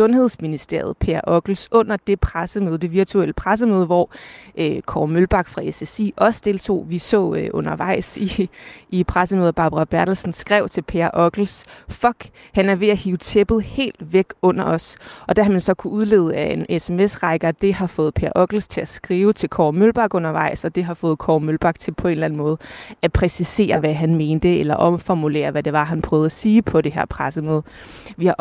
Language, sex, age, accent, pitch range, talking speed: Danish, female, 30-49, native, 160-195 Hz, 200 wpm